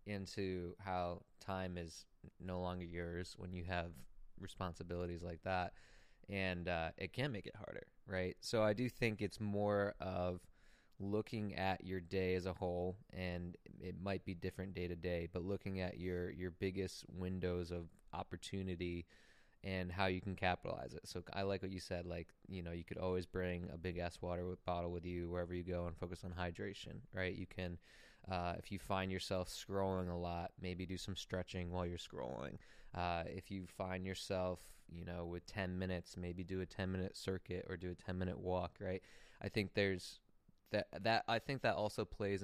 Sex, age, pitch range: male, 20-39, 90-100 Hz